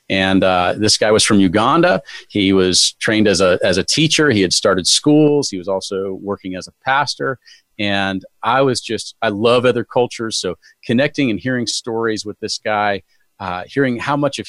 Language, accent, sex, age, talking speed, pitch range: English, American, male, 40-59, 190 wpm, 95-125 Hz